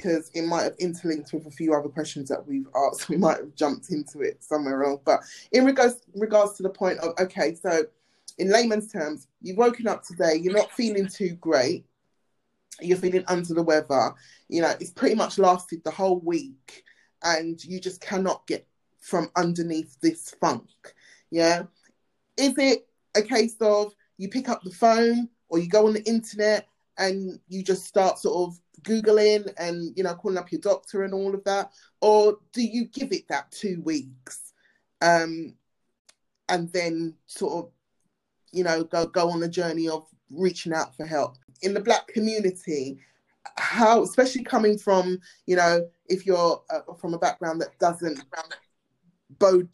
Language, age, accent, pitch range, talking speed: English, 20-39, British, 165-215 Hz, 175 wpm